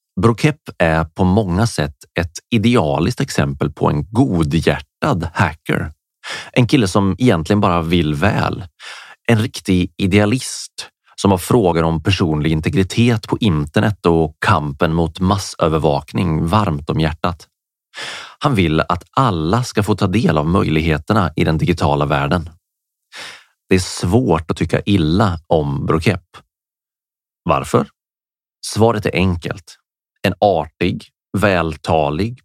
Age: 30-49